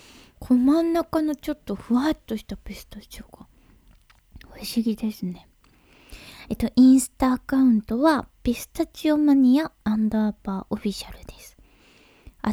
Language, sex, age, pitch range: Japanese, female, 20-39, 205-260 Hz